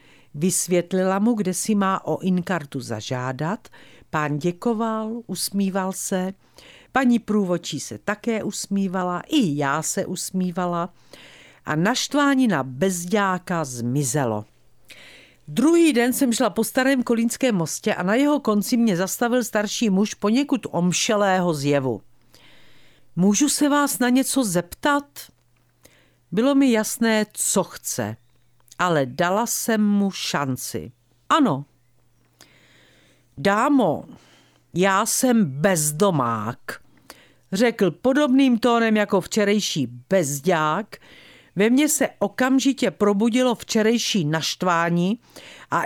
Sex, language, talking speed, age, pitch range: female, Czech, 105 wpm, 50-69, 155-230 Hz